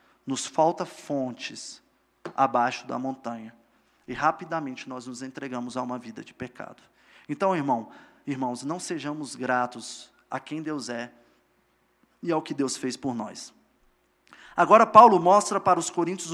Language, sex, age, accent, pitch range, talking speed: Portuguese, male, 20-39, Brazilian, 155-215 Hz, 145 wpm